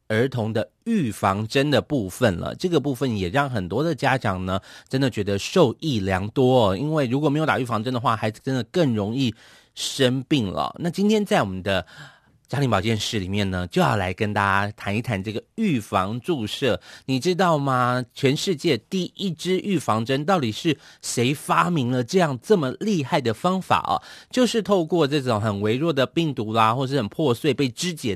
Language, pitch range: Chinese, 105-150 Hz